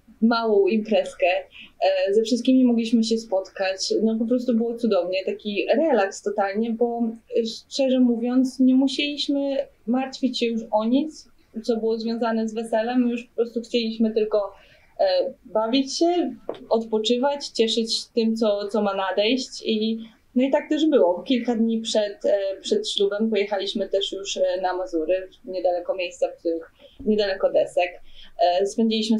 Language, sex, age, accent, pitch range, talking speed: Polish, female, 20-39, native, 195-245 Hz, 140 wpm